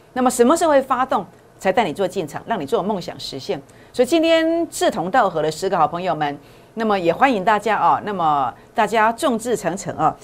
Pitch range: 165-245 Hz